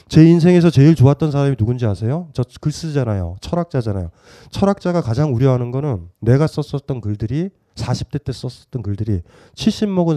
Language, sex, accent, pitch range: Korean, male, native, 105-150 Hz